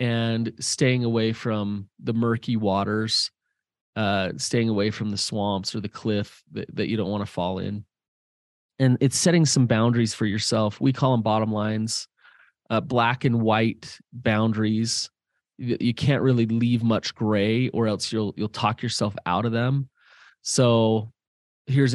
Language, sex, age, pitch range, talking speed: English, male, 30-49, 100-115 Hz, 160 wpm